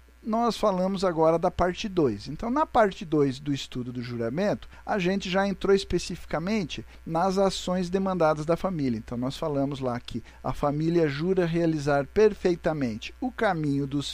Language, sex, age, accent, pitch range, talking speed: Portuguese, male, 50-69, Brazilian, 140-205 Hz, 155 wpm